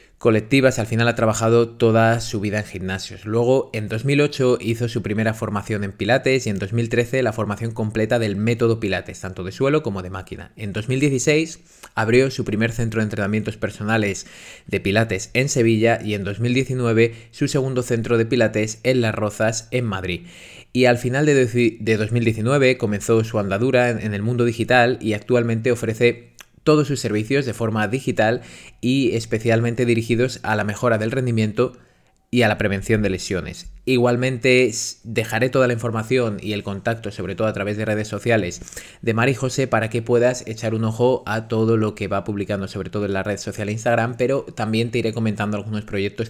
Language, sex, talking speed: Spanish, male, 180 wpm